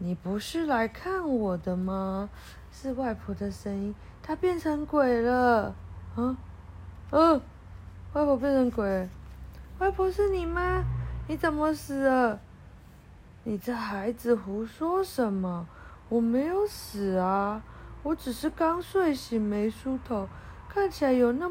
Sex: female